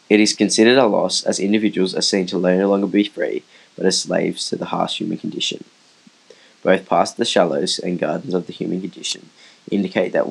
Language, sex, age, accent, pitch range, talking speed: English, male, 10-29, Australian, 90-100 Hz, 200 wpm